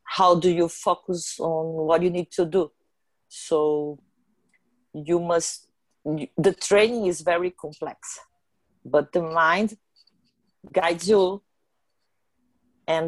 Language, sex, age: English, female, 40-59